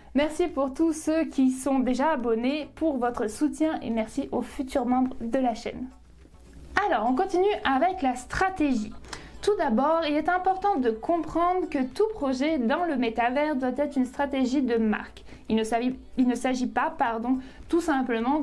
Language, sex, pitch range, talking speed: French, female, 245-305 Hz, 170 wpm